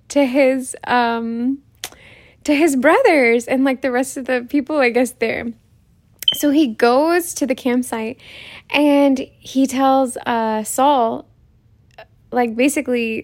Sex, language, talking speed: female, English, 130 wpm